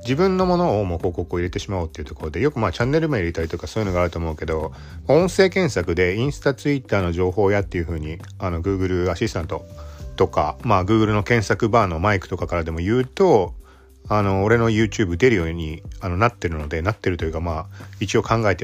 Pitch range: 80-115 Hz